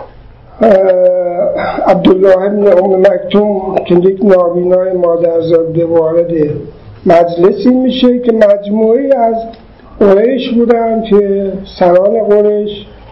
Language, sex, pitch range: Persian, male, 185-245 Hz